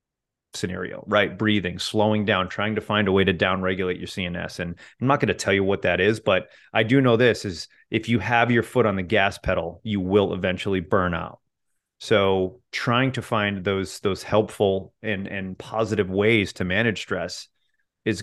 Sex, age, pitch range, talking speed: male, 30-49, 95-115 Hz, 195 wpm